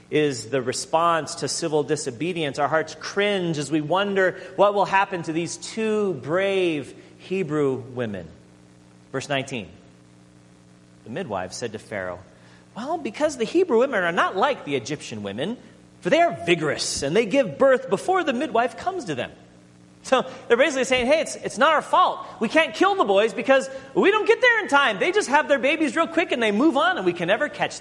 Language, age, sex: English, 40-59, male